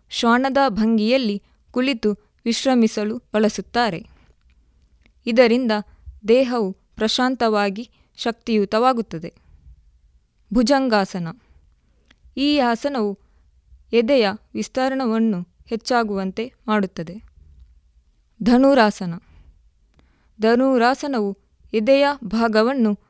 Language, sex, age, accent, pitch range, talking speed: Kannada, female, 20-39, native, 190-245 Hz, 50 wpm